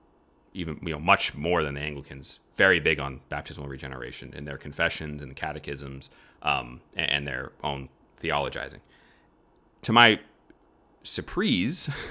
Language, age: English, 30-49